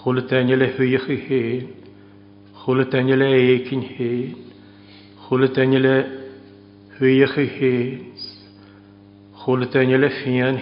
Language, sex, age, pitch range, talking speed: English, male, 60-79, 100-130 Hz, 85 wpm